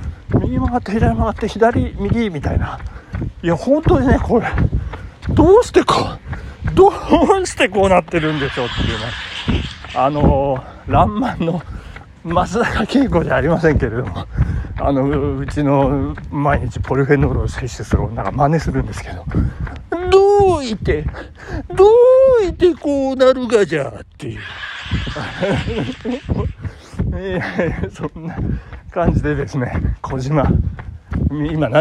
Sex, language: male, Japanese